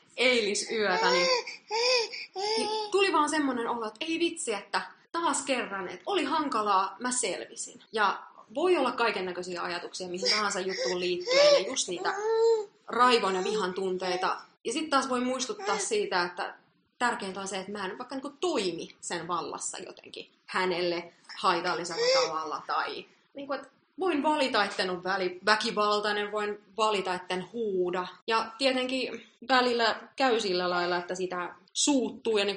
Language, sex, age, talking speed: Finnish, female, 30-49, 145 wpm